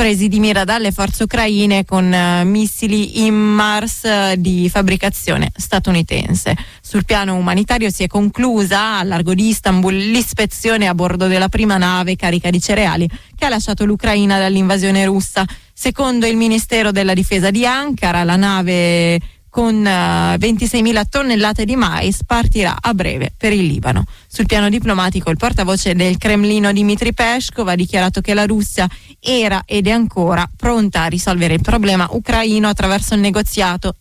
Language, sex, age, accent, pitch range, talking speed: Italian, female, 20-39, native, 185-225 Hz, 150 wpm